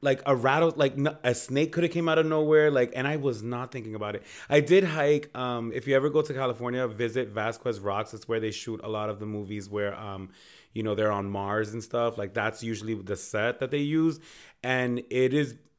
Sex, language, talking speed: male, English, 235 wpm